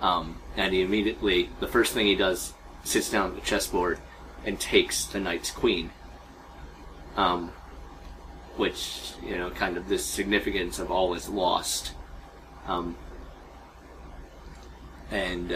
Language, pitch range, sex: English, 65-90 Hz, male